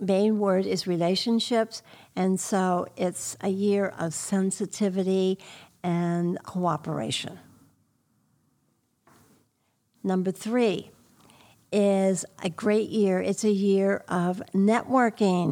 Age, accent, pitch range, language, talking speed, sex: 60-79, American, 180-210 Hz, English, 95 wpm, female